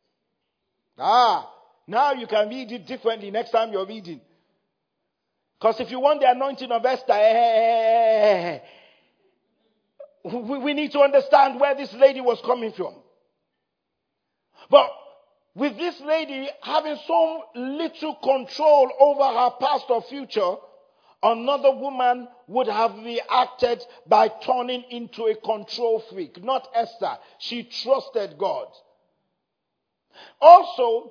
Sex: male